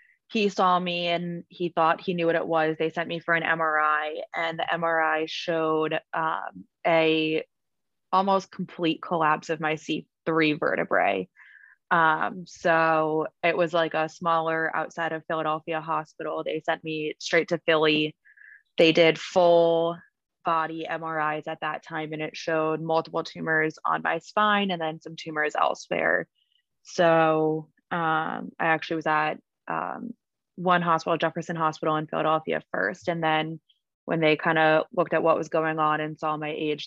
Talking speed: 160 wpm